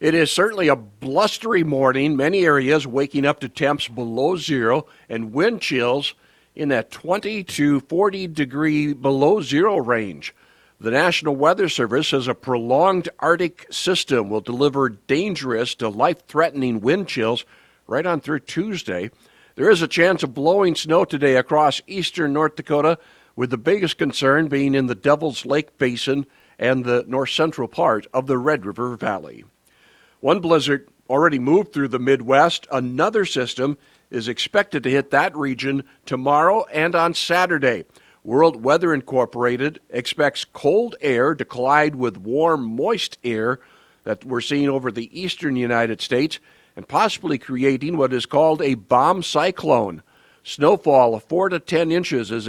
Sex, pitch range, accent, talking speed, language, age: male, 130-165 Hz, American, 150 wpm, English, 60-79